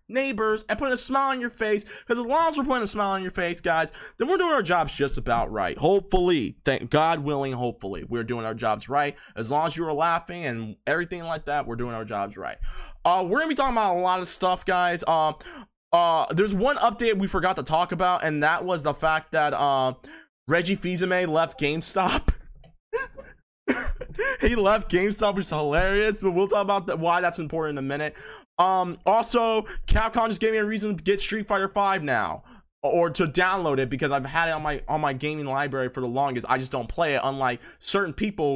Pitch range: 150-215 Hz